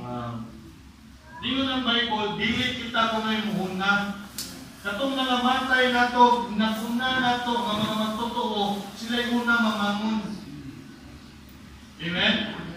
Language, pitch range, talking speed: English, 185-225 Hz, 105 wpm